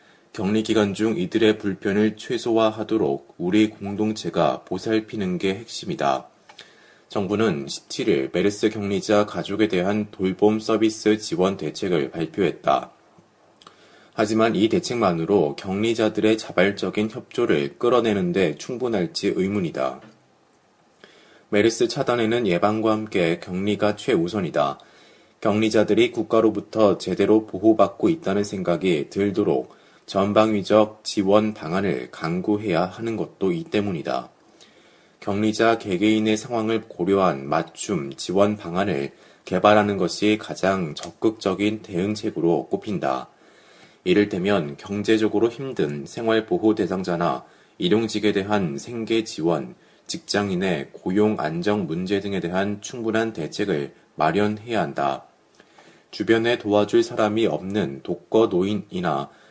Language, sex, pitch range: Korean, male, 95-110 Hz